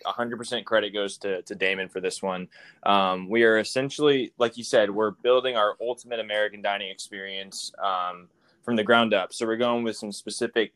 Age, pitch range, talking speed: 10-29, 100-115 Hz, 185 wpm